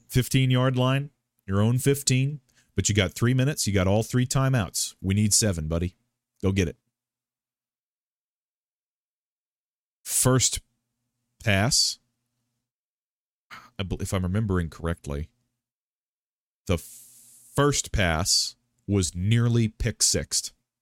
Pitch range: 95-120 Hz